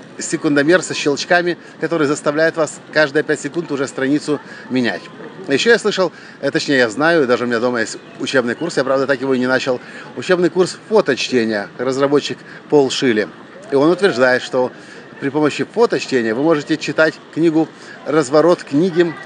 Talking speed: 160 wpm